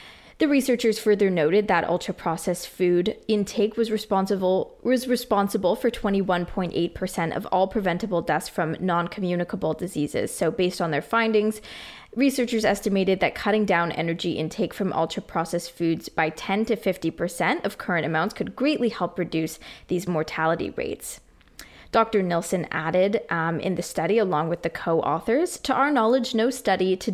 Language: English